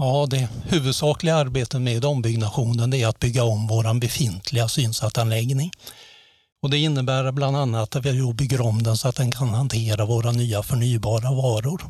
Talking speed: 155 wpm